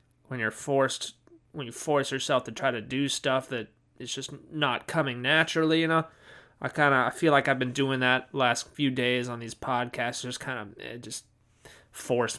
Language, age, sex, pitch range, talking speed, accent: English, 20-39, male, 125-150 Hz, 200 wpm, American